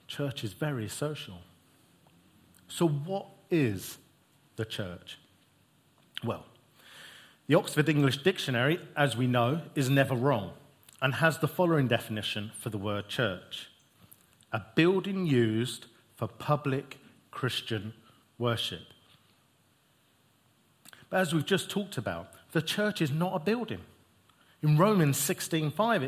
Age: 40-59